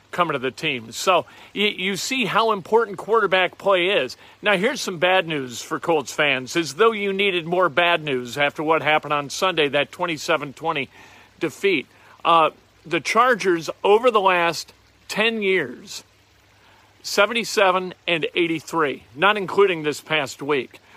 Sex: male